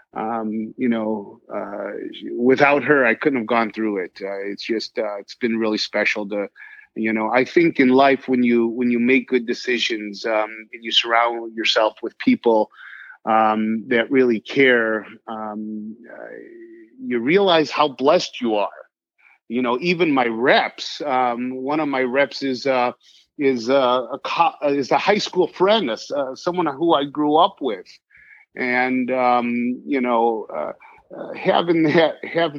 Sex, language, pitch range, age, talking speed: male, English, 115-165 Hz, 30-49, 165 wpm